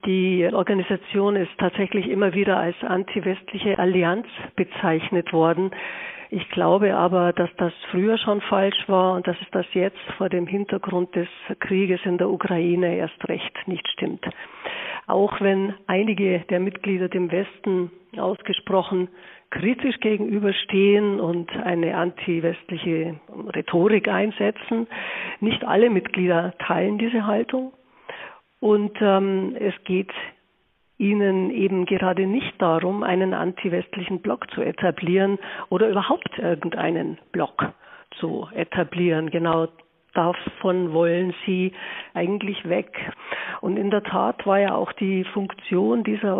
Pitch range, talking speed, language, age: 180-205 Hz, 120 wpm, German, 50-69